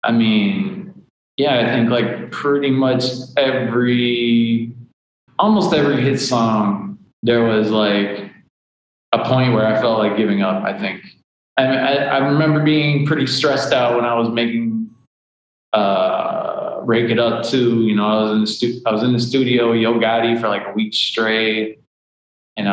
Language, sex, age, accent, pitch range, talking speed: English, male, 20-39, American, 105-130 Hz, 170 wpm